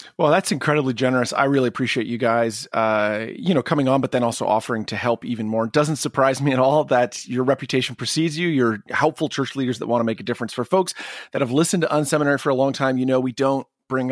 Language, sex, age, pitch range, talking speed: English, male, 30-49, 120-155 Hz, 250 wpm